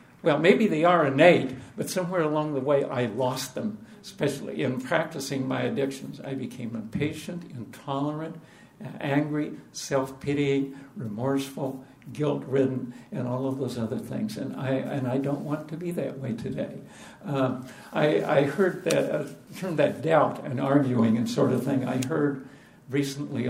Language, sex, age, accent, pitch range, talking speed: English, male, 60-79, American, 130-155 Hz, 155 wpm